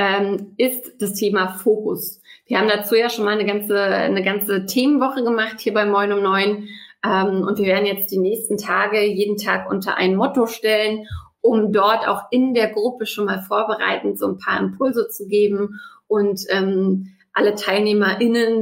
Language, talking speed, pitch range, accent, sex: German, 175 wpm, 200-245 Hz, German, female